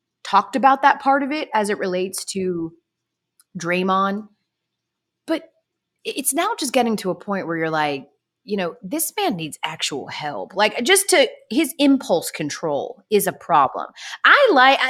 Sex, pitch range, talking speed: female, 180-270 Hz, 160 wpm